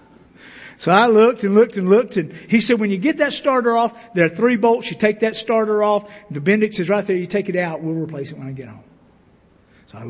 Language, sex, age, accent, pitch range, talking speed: English, male, 50-69, American, 165-225 Hz, 255 wpm